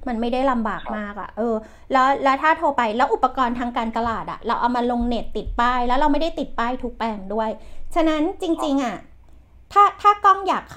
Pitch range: 235-310 Hz